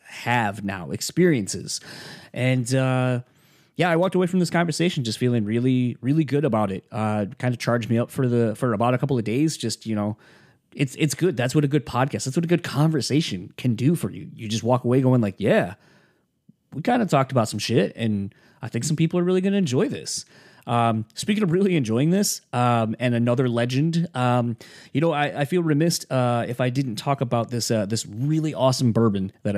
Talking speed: 220 wpm